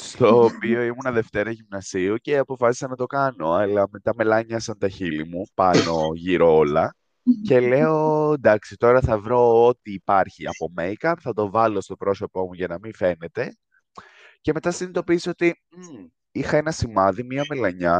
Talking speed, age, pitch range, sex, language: 160 wpm, 20-39, 105-145 Hz, male, Greek